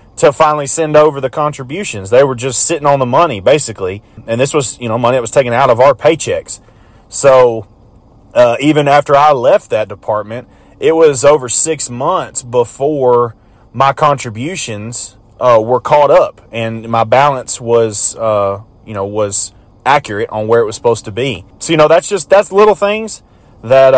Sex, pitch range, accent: male, 110-140 Hz, American